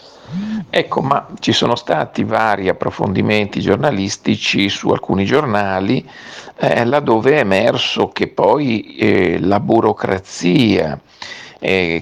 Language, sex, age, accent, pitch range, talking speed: Italian, male, 50-69, native, 85-105 Hz, 105 wpm